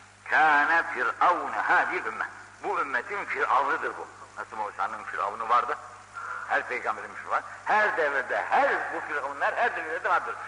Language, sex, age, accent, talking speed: Turkish, male, 60-79, native, 130 wpm